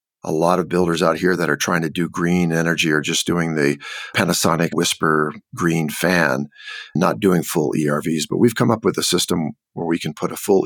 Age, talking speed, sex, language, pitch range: 50-69, 215 wpm, male, English, 75-90 Hz